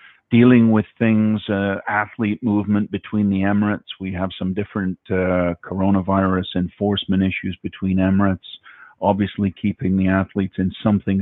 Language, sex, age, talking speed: English, male, 50-69, 135 wpm